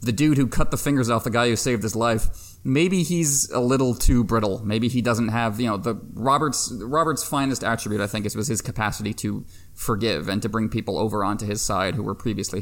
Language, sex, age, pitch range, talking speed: English, male, 30-49, 105-125 Hz, 235 wpm